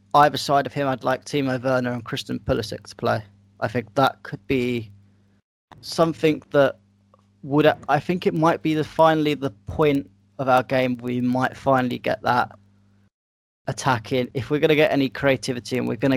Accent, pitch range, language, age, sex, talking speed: British, 105-135 Hz, English, 20-39, male, 180 wpm